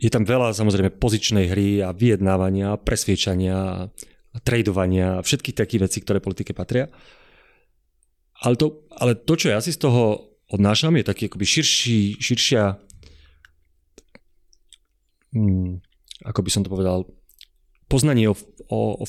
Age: 30-49